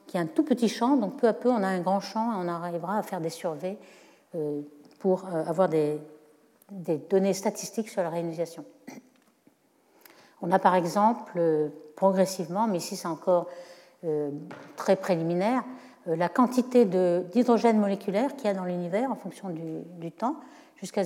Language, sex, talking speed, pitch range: French, female, 170 wpm, 175-235 Hz